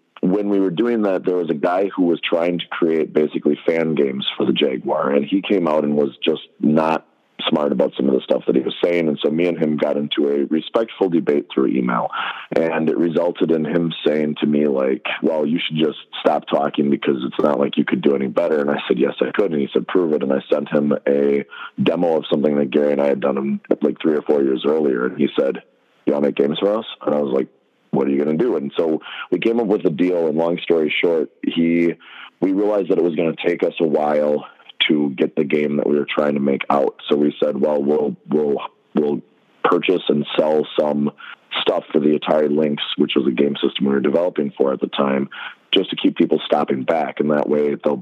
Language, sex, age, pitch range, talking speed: English, male, 30-49, 70-80 Hz, 245 wpm